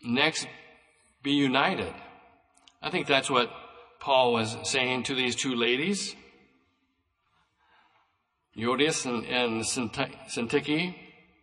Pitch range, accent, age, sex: 130-170 Hz, American, 60-79, male